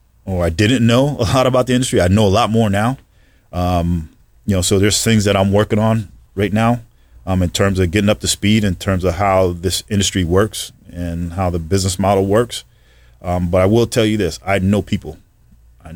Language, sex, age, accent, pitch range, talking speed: English, male, 30-49, American, 90-105 Hz, 220 wpm